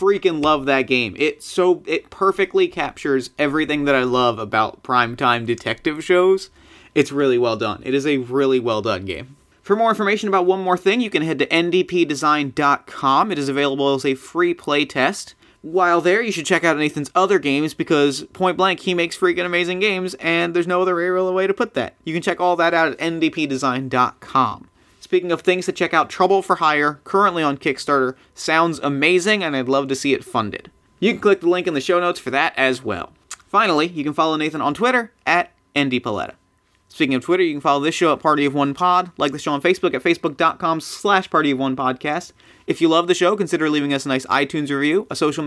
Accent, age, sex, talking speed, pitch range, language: American, 30-49, male, 210 wpm, 140-180 Hz, English